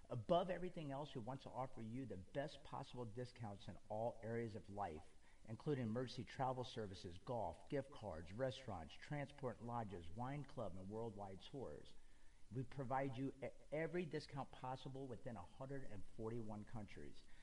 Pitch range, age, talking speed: 110-140 Hz, 50-69, 145 wpm